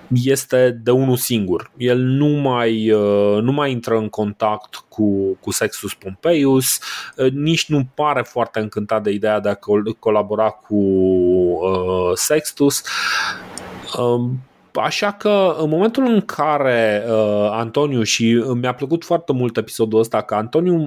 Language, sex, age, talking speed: Romanian, male, 20-39, 130 wpm